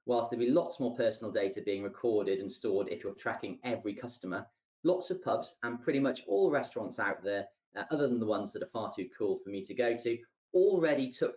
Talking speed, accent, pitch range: 230 wpm, British, 120-175 Hz